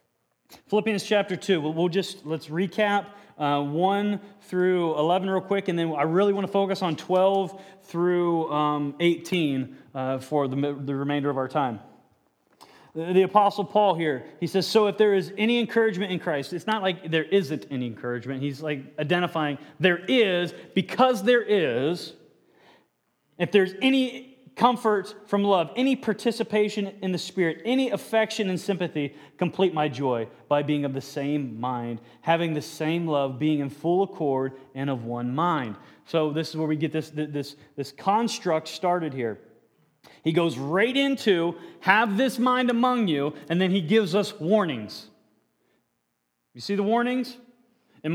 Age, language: 30-49, English